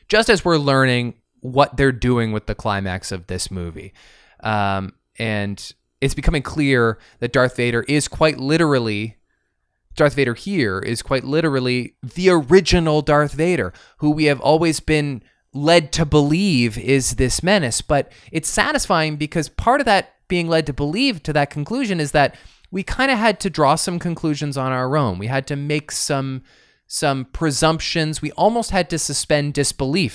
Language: English